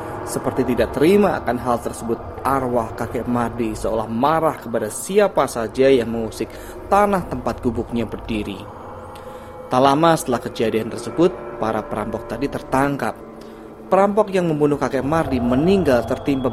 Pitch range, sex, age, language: 115-140 Hz, male, 20-39, Indonesian